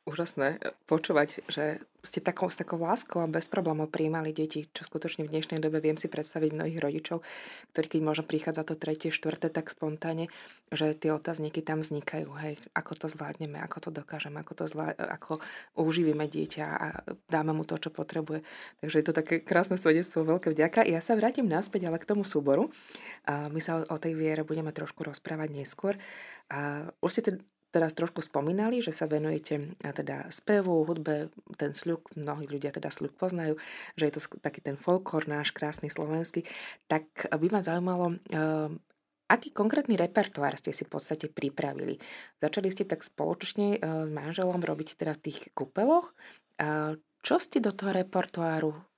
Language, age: Slovak, 20-39